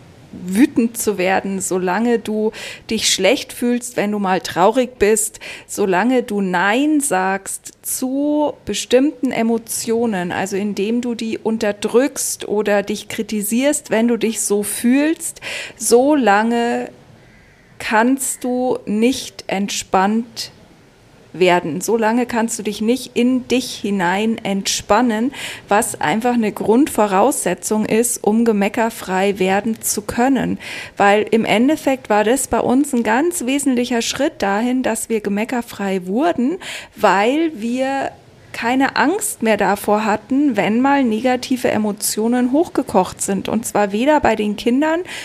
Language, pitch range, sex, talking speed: German, 205-255 Hz, female, 125 wpm